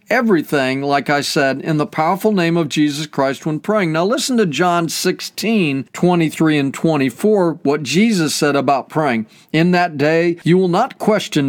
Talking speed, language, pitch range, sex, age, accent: 170 wpm, English, 150-190 Hz, male, 40-59, American